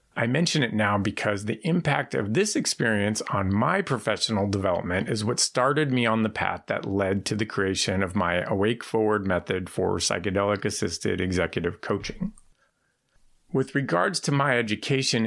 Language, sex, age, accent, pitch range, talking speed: English, male, 40-59, American, 100-125 Hz, 160 wpm